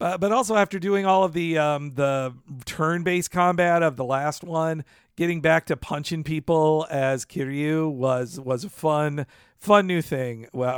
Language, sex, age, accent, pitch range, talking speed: English, male, 50-69, American, 135-170 Hz, 180 wpm